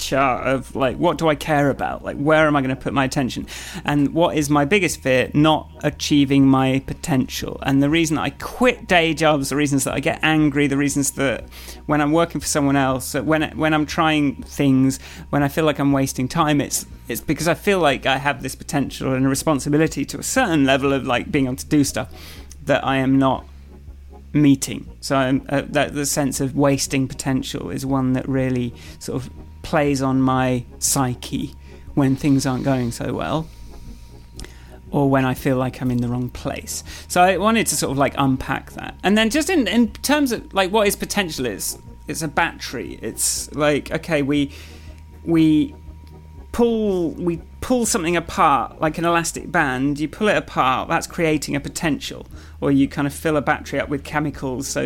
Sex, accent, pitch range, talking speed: male, British, 130-160 Hz, 200 wpm